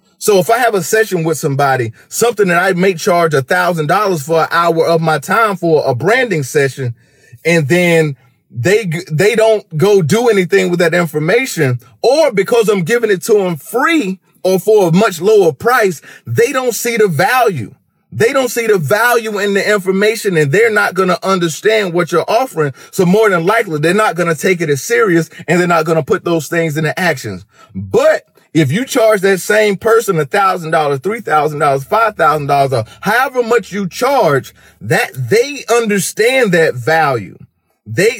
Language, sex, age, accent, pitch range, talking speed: English, male, 30-49, American, 160-225 Hz, 190 wpm